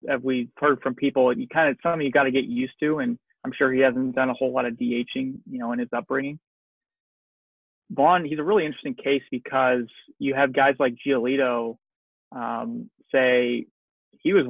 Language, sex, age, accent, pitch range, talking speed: English, male, 30-49, American, 125-150 Hz, 200 wpm